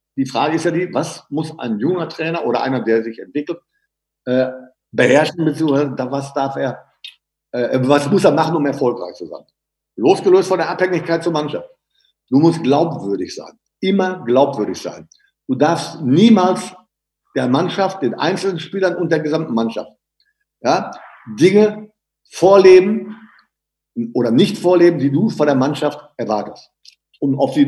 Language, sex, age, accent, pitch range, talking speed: German, male, 50-69, German, 140-185 Hz, 150 wpm